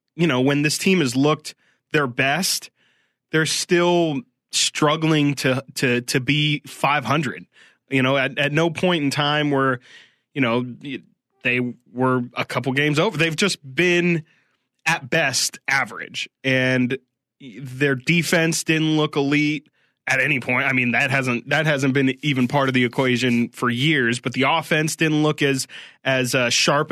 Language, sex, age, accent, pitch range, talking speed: English, male, 20-39, American, 130-160 Hz, 160 wpm